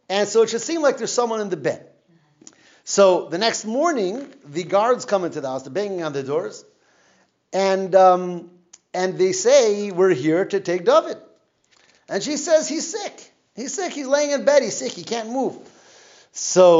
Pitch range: 170-260 Hz